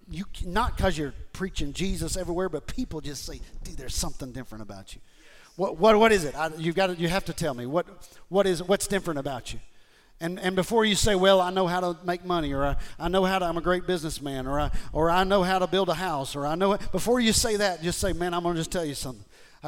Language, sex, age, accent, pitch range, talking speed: English, male, 50-69, American, 155-210 Hz, 265 wpm